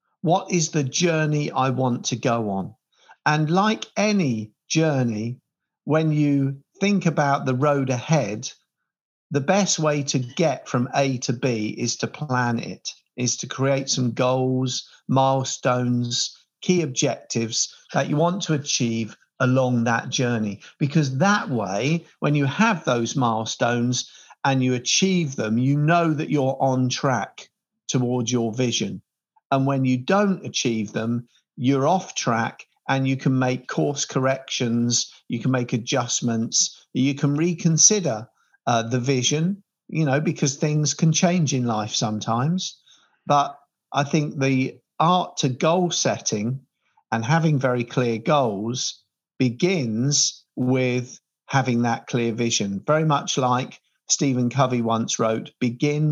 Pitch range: 120-155 Hz